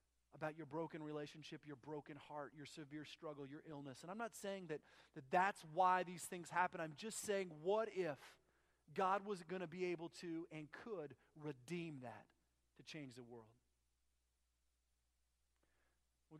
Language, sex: English, male